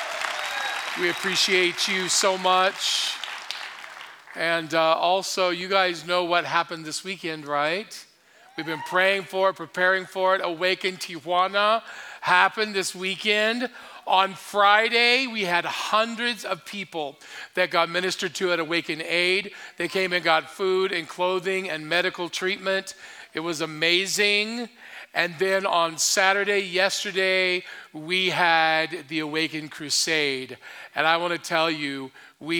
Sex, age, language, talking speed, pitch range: male, 40-59, English, 135 wpm, 155-185 Hz